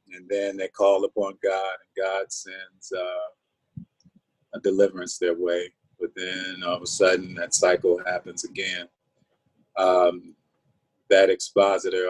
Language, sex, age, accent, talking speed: English, male, 40-59, American, 135 wpm